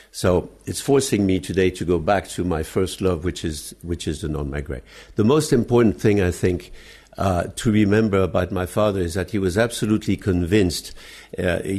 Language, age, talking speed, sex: English, 60-79, 190 wpm, male